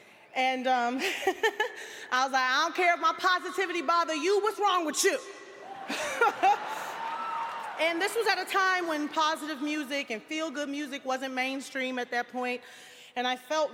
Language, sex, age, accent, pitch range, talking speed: English, female, 30-49, American, 255-355 Hz, 165 wpm